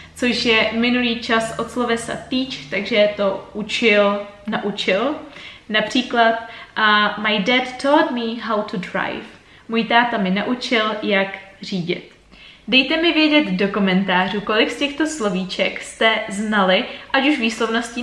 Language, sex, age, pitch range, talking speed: Czech, female, 20-39, 210-255 Hz, 135 wpm